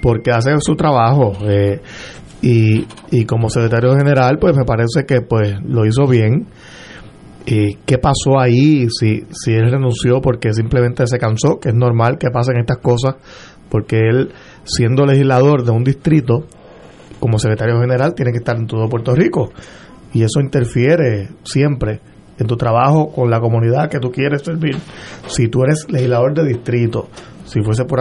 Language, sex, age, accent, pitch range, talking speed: Spanish, male, 30-49, Venezuelan, 115-140 Hz, 165 wpm